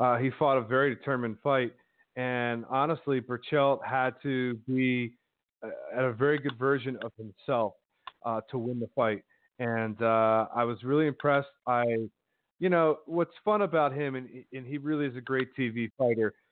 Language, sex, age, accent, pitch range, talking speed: English, male, 30-49, American, 120-145 Hz, 170 wpm